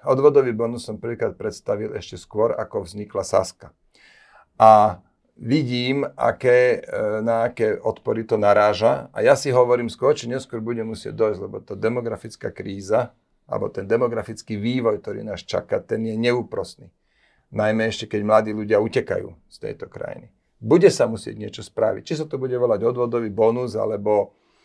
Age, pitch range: 40-59, 110-130 Hz